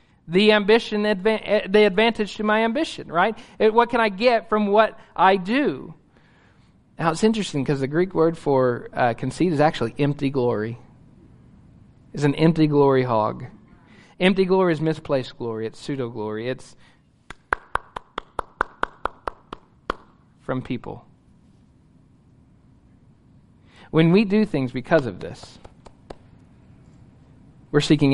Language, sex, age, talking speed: English, male, 40-59, 120 wpm